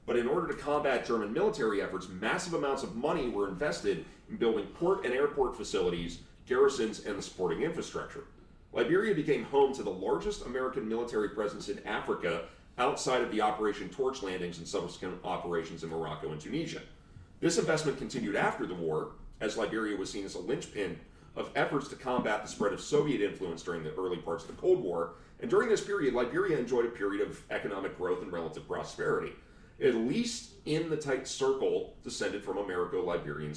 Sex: male